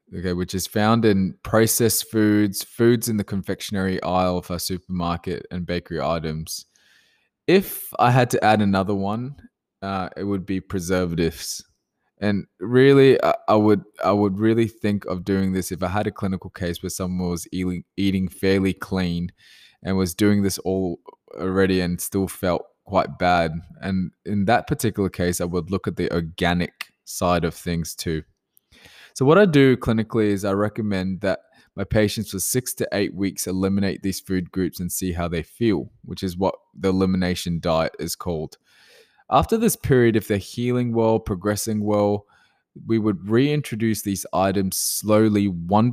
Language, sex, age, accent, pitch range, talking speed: English, male, 20-39, Australian, 90-105 Hz, 165 wpm